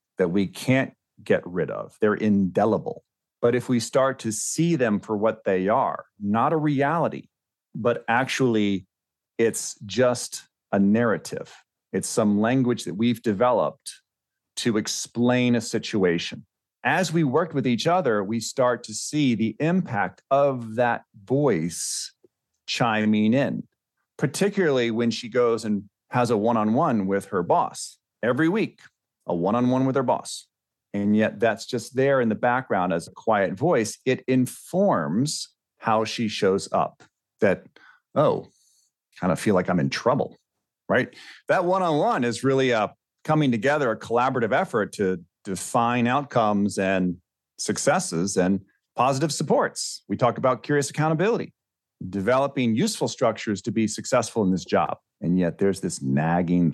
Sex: male